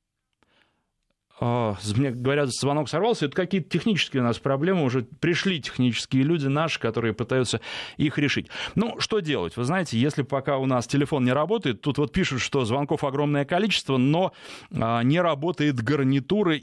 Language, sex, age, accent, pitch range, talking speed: Russian, male, 20-39, native, 120-160 Hz, 150 wpm